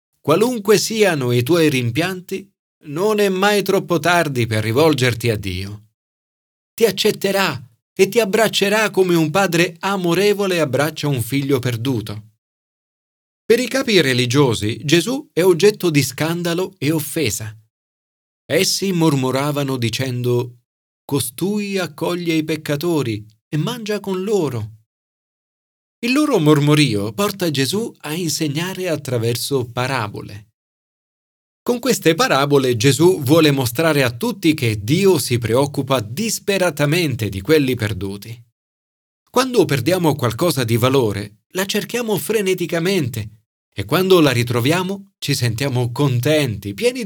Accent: native